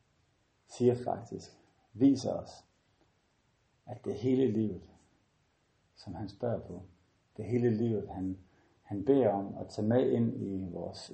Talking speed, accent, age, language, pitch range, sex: 135 wpm, native, 50-69, Danish, 95-120 Hz, male